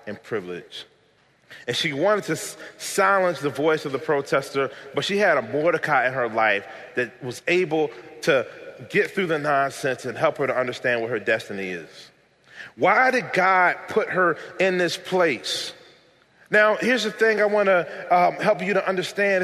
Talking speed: 175 wpm